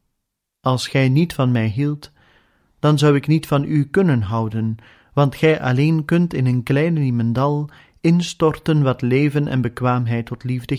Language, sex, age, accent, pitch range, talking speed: Dutch, male, 30-49, Dutch, 115-145 Hz, 160 wpm